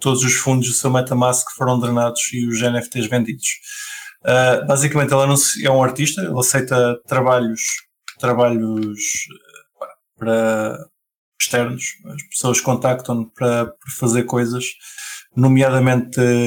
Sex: male